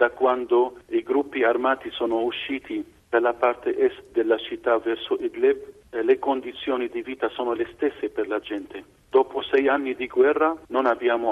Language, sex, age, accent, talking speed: Italian, male, 50-69, native, 165 wpm